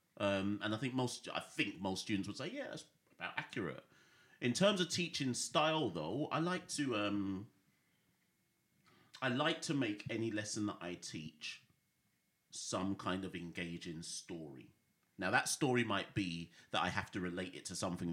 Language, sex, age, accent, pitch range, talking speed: English, male, 40-59, British, 85-105 Hz, 170 wpm